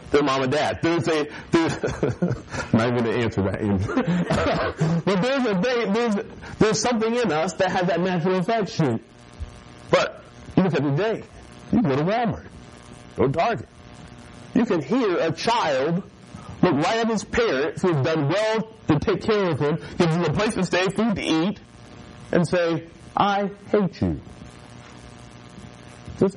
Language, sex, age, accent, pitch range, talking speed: English, male, 50-69, American, 110-180 Hz, 165 wpm